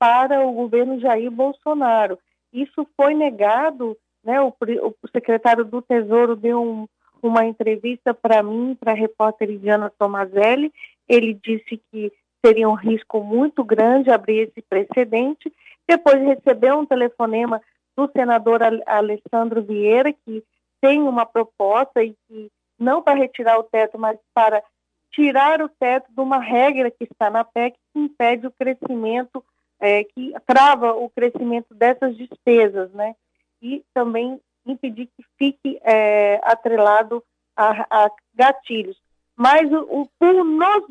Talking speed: 130 wpm